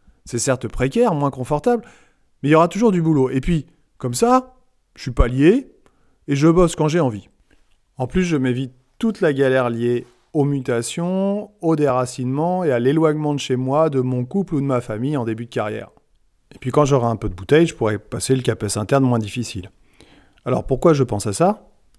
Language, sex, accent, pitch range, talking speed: French, male, French, 120-170 Hz, 210 wpm